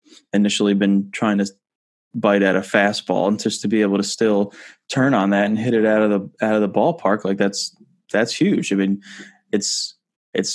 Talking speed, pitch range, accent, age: 205 wpm, 100-115 Hz, American, 20-39